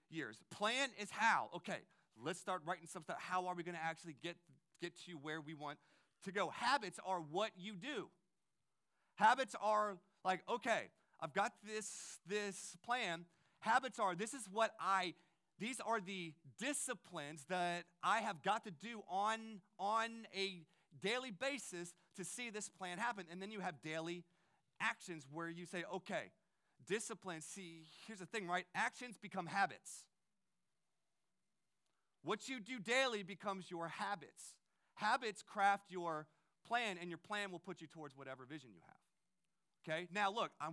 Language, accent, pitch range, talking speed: English, American, 160-205 Hz, 160 wpm